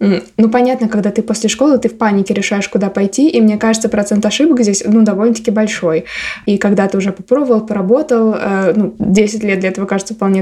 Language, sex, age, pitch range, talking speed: Russian, female, 20-39, 195-225 Hz, 200 wpm